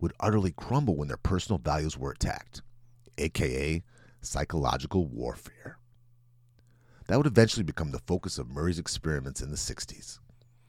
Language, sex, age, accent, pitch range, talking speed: English, male, 40-59, American, 85-120 Hz, 135 wpm